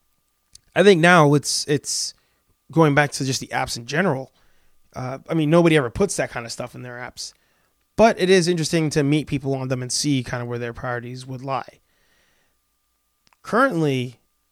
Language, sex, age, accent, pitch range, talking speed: English, male, 20-39, American, 130-165 Hz, 185 wpm